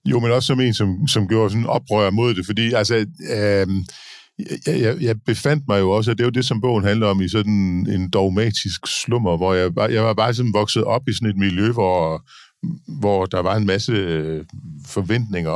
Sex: male